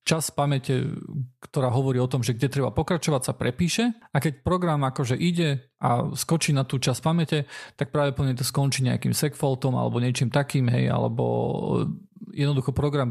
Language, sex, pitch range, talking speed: Slovak, male, 130-155 Hz, 175 wpm